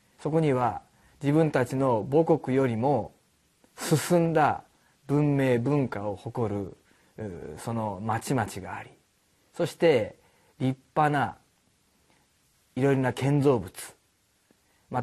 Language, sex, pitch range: Japanese, male, 115-175 Hz